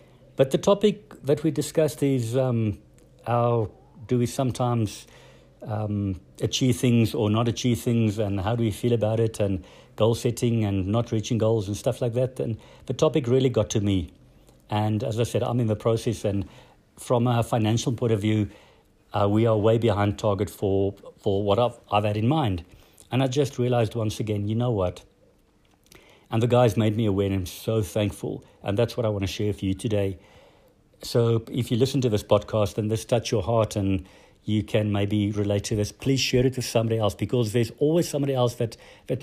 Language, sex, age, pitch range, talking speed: English, male, 50-69, 105-125 Hz, 205 wpm